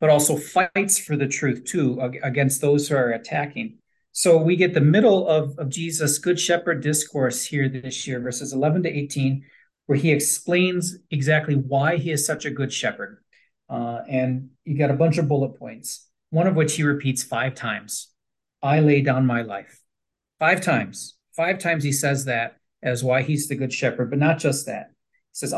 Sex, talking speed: male, 190 wpm